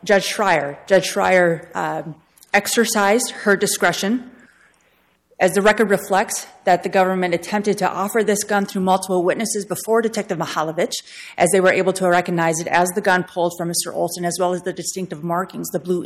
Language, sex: English, female